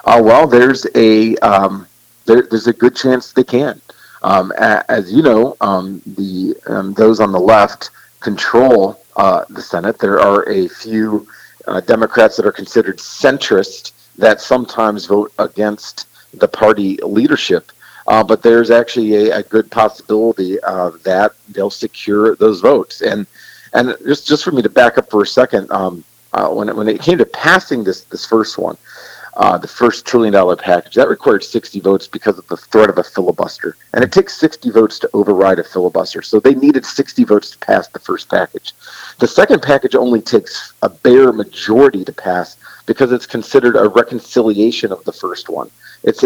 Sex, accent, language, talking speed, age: male, American, English, 180 wpm, 40-59